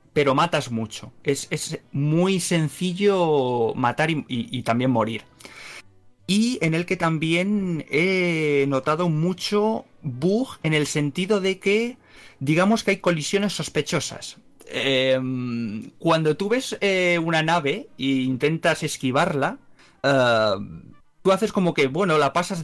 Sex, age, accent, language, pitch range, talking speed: male, 30-49, Spanish, Spanish, 130-175 Hz, 135 wpm